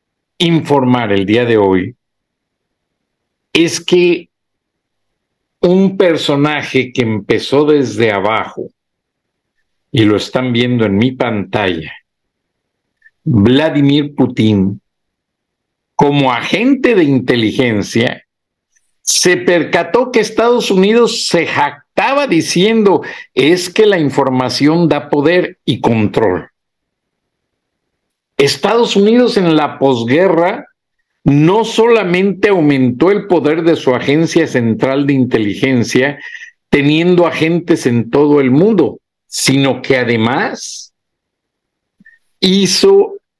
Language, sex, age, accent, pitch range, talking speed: Spanish, male, 60-79, Mexican, 130-190 Hz, 95 wpm